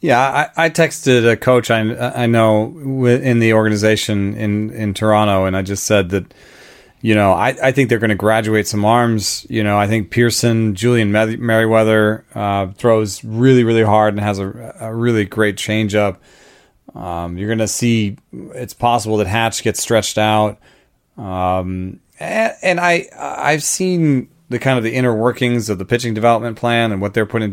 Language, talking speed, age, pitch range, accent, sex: English, 185 wpm, 30-49, 105-120 Hz, American, male